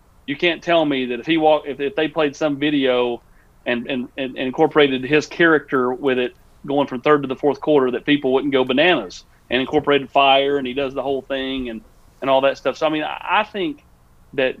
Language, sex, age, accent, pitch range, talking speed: English, male, 40-59, American, 125-155 Hz, 220 wpm